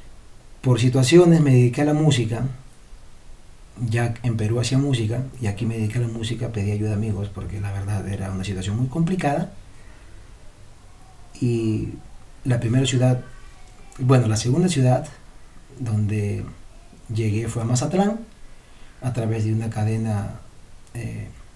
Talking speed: 140 wpm